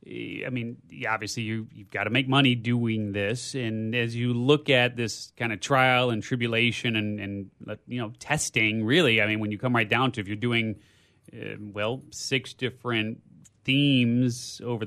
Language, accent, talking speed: English, American, 185 wpm